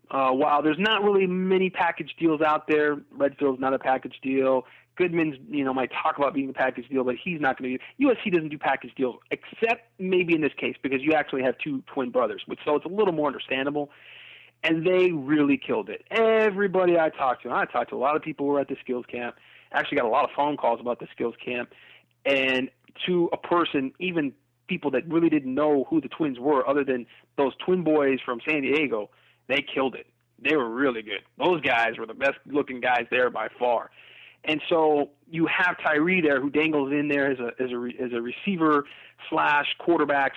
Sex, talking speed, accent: male, 215 wpm, American